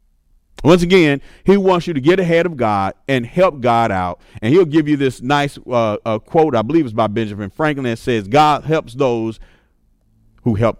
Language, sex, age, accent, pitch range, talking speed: English, male, 40-59, American, 105-160 Hz, 200 wpm